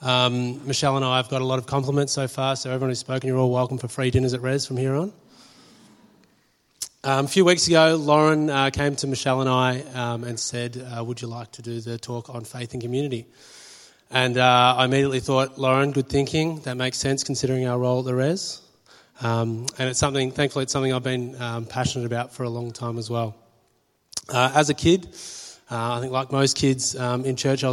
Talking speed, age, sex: 225 wpm, 30-49, male